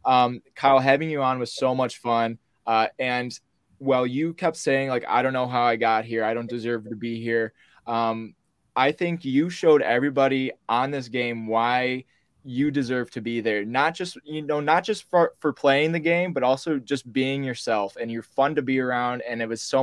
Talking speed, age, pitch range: 210 wpm, 20-39, 110-135 Hz